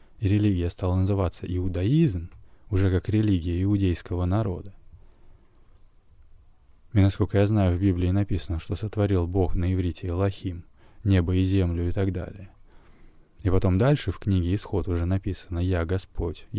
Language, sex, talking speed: Russian, male, 140 wpm